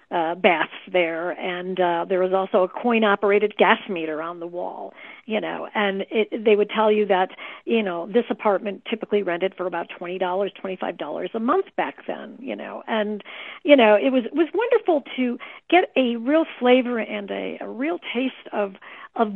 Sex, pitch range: female, 195-240 Hz